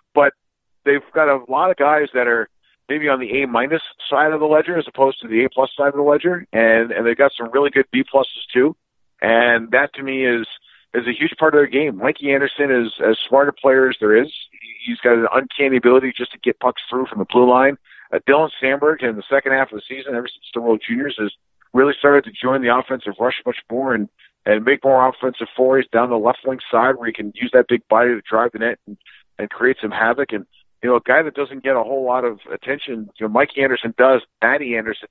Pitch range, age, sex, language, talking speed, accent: 115-140 Hz, 50-69, male, English, 245 wpm, American